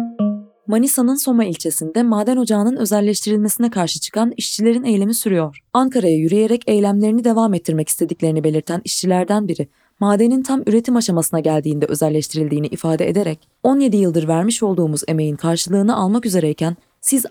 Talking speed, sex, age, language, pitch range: 130 wpm, female, 20-39, Turkish, 165-230 Hz